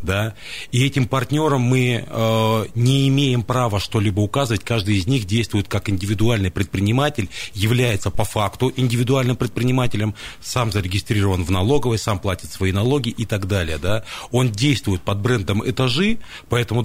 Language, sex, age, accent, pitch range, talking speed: Russian, male, 30-49, native, 100-125 Hz, 145 wpm